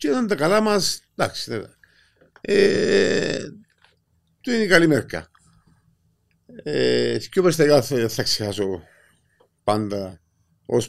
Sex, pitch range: male, 105-165 Hz